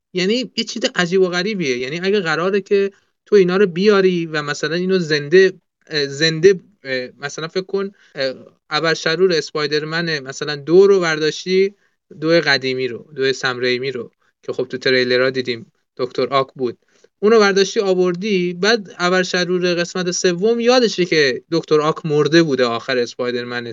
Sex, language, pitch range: male, Persian, 160-205 Hz